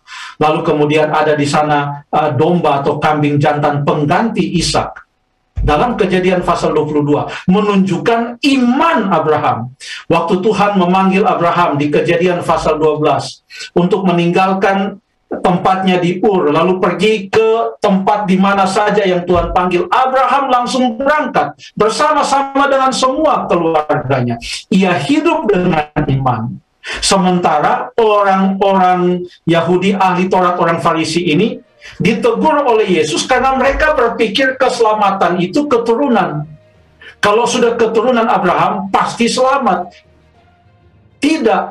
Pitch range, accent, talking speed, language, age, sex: 160-245 Hz, native, 110 wpm, Indonesian, 50-69, male